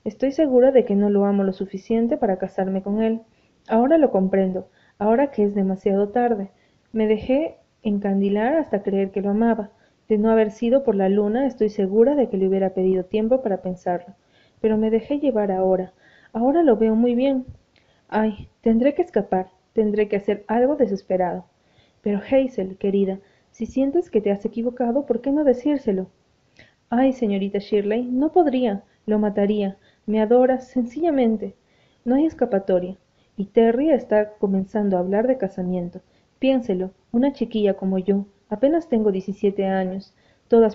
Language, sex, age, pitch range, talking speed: Spanish, female, 30-49, 195-240 Hz, 160 wpm